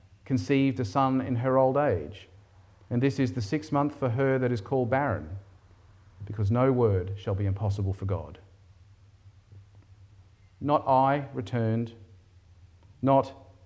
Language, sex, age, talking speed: English, male, 40-59, 135 wpm